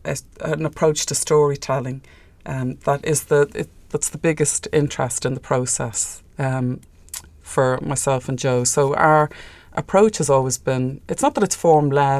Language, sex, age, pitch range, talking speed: English, female, 30-49, 130-160 Hz, 160 wpm